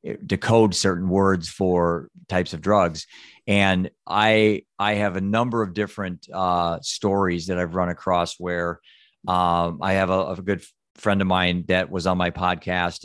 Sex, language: male, English